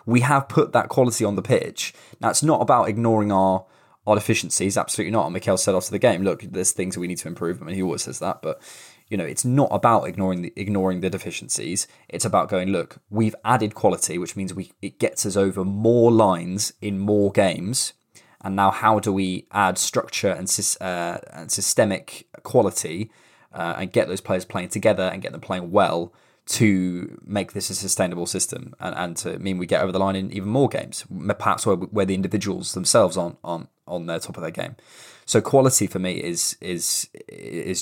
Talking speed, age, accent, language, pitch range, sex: 210 wpm, 20-39, British, English, 95-110 Hz, male